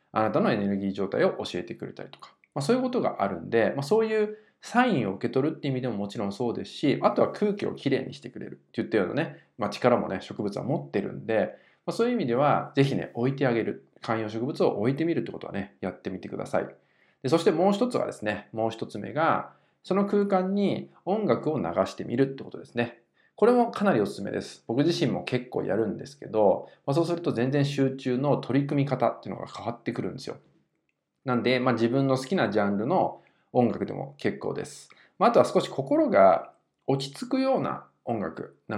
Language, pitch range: Japanese, 115-185 Hz